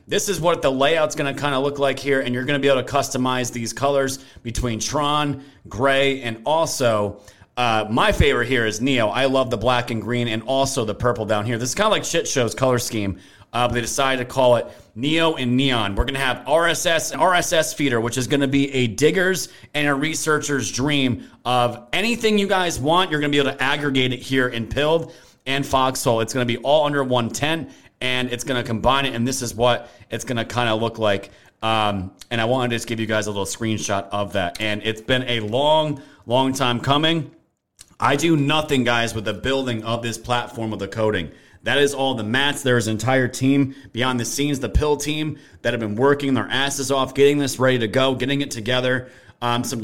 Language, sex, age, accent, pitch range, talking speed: English, male, 30-49, American, 115-140 Hz, 220 wpm